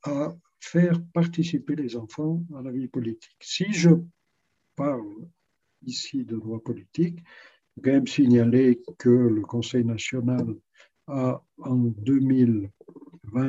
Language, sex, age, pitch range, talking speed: French, male, 60-79, 120-160 Hz, 110 wpm